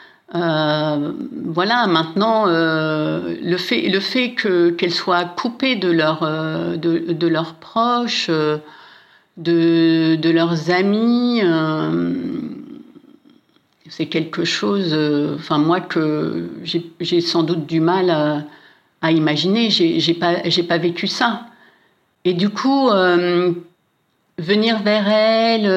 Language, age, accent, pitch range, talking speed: French, 60-79, French, 165-210 Hz, 130 wpm